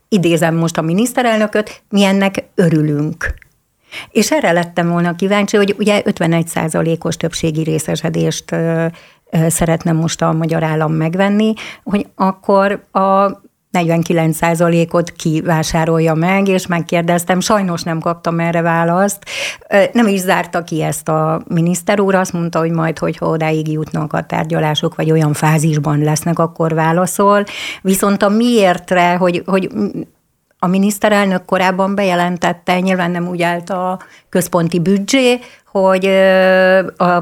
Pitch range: 165-190 Hz